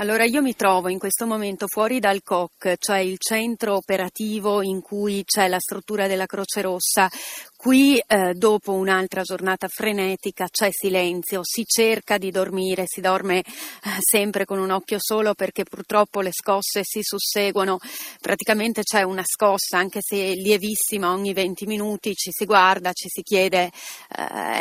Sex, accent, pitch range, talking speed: female, native, 185-215 Hz, 160 wpm